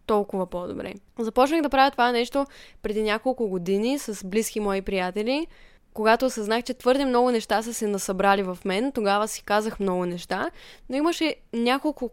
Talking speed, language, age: 165 wpm, Bulgarian, 20-39